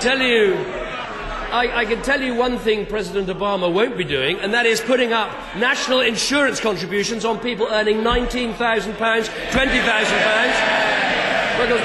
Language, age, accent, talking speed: English, 40-59, British, 130 wpm